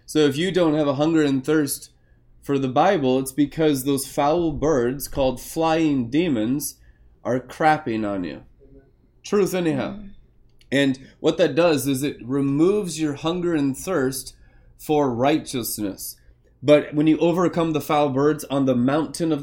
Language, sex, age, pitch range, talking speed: English, male, 20-39, 125-155 Hz, 155 wpm